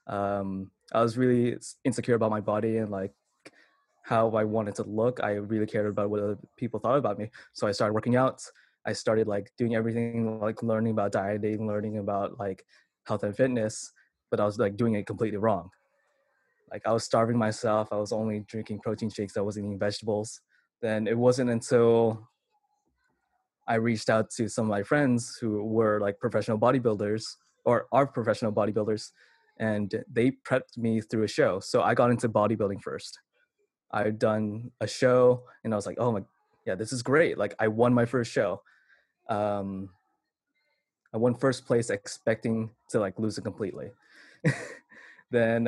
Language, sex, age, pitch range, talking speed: English, male, 20-39, 105-120 Hz, 175 wpm